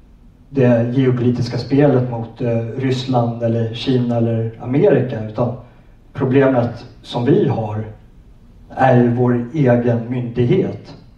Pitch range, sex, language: 120-135 Hz, male, Swedish